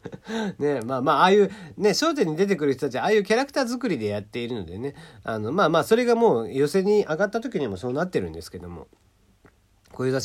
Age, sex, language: 40-59, male, Japanese